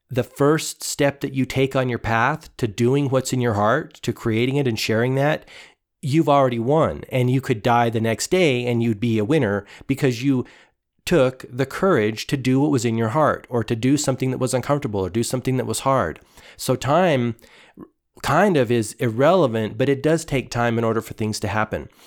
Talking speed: 210 wpm